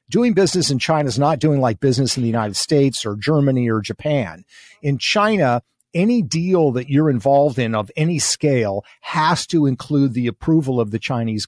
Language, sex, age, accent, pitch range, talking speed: English, male, 50-69, American, 125-160 Hz, 190 wpm